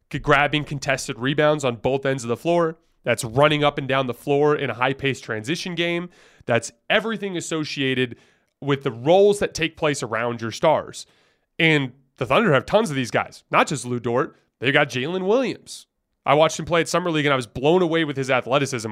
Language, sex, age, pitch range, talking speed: English, male, 30-49, 130-165 Hz, 205 wpm